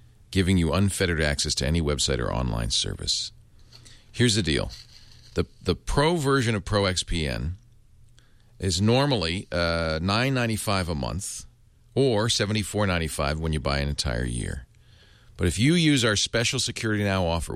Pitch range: 85-115 Hz